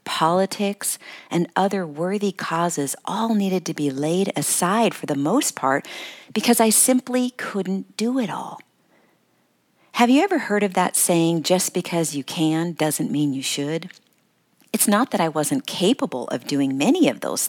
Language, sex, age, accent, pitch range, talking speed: English, female, 50-69, American, 155-205 Hz, 165 wpm